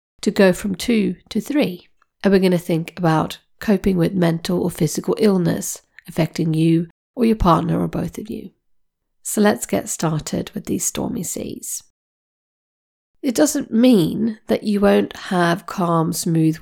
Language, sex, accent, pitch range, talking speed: English, female, British, 165-225 Hz, 160 wpm